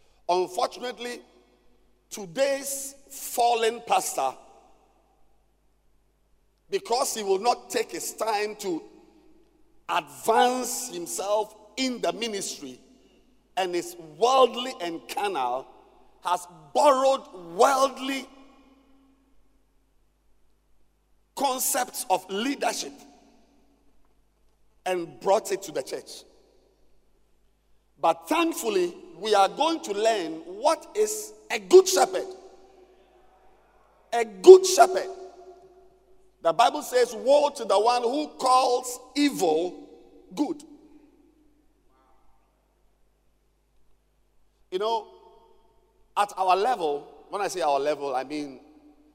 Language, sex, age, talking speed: English, male, 50-69, 90 wpm